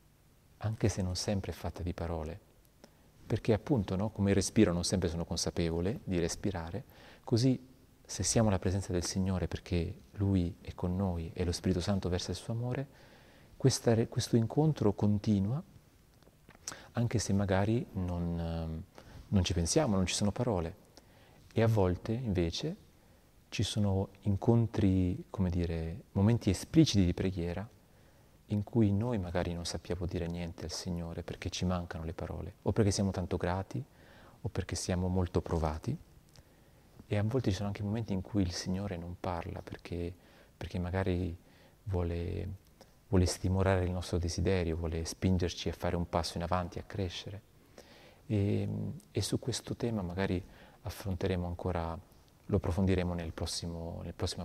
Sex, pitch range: male, 85-105 Hz